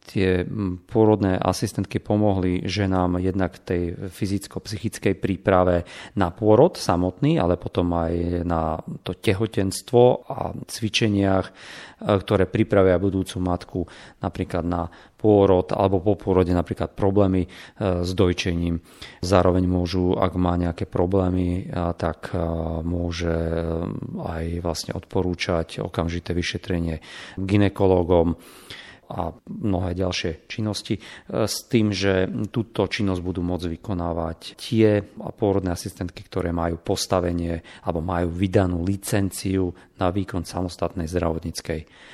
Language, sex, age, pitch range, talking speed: Slovak, male, 40-59, 90-100 Hz, 105 wpm